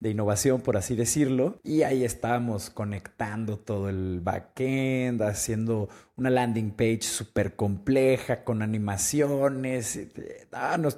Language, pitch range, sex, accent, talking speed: Spanish, 105-140 Hz, male, Mexican, 115 wpm